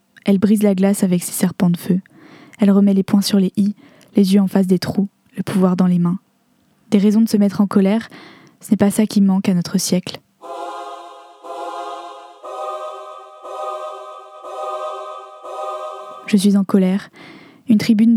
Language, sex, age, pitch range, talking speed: French, female, 20-39, 185-210 Hz, 160 wpm